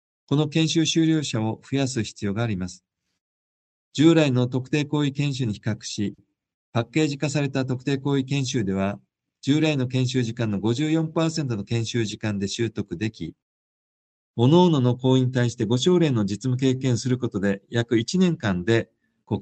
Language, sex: Japanese, male